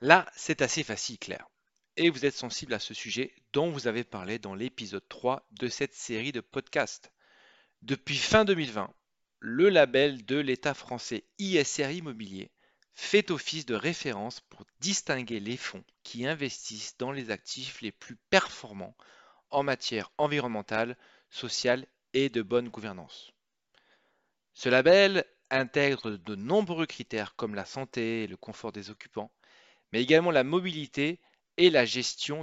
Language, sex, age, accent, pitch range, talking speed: French, male, 40-59, French, 115-155 Hz, 145 wpm